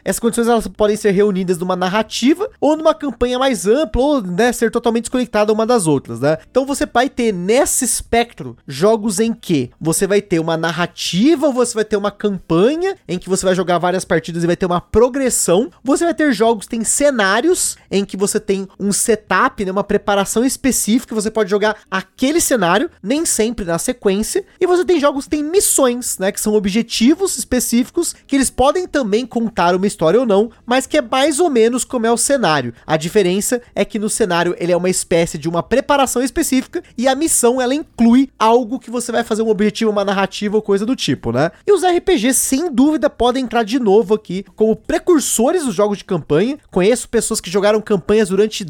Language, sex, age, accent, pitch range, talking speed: Portuguese, male, 20-39, Brazilian, 195-255 Hz, 205 wpm